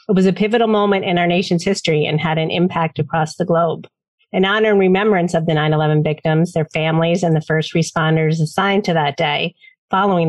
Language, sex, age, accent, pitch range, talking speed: English, female, 40-59, American, 160-195 Hz, 205 wpm